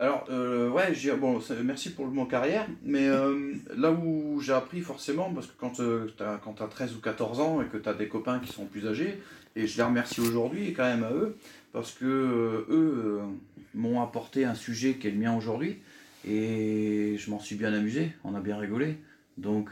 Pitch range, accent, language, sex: 100-125 Hz, French, French, male